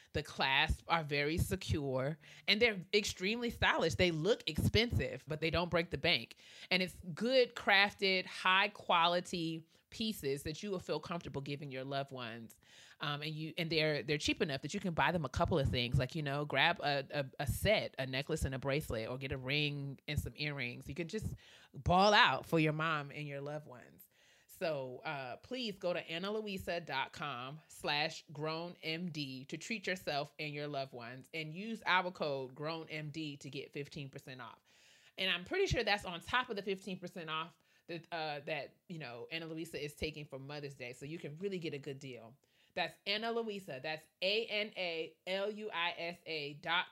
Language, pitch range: English, 140-180 Hz